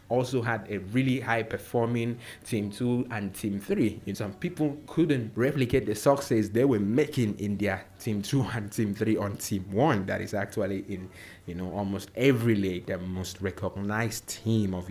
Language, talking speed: English, 180 wpm